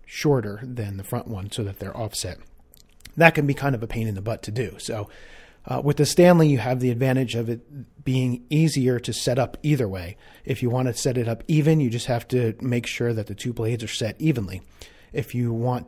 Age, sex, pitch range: 40-59, male, 110-130 Hz